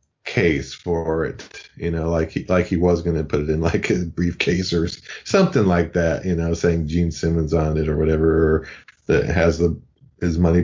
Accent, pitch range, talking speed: American, 80-95 Hz, 205 wpm